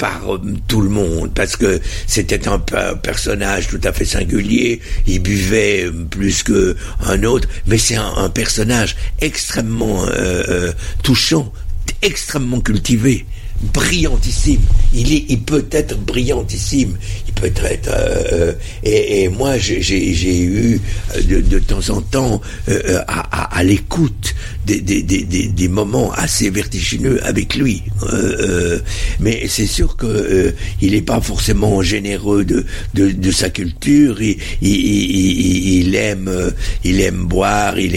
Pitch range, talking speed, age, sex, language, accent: 95-110 Hz, 145 wpm, 60-79, male, French, French